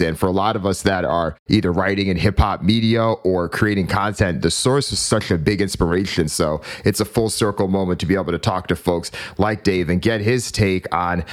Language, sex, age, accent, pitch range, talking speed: English, male, 30-49, American, 85-105 Hz, 235 wpm